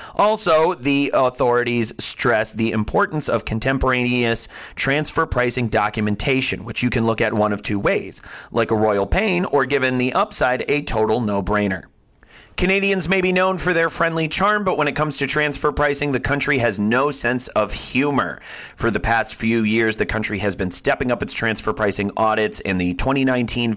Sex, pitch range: male, 110-140 Hz